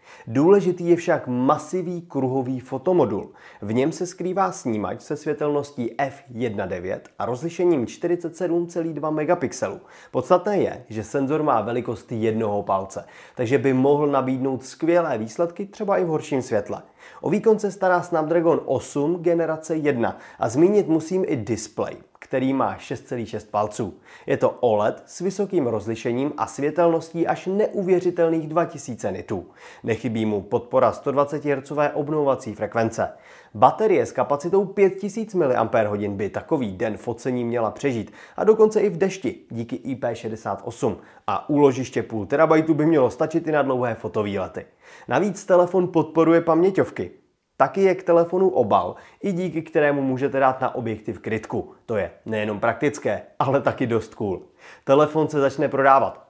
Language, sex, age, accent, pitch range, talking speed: Czech, male, 30-49, native, 120-170 Hz, 140 wpm